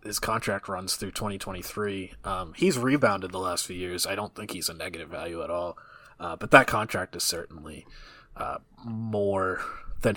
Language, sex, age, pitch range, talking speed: English, male, 20-39, 95-120 Hz, 175 wpm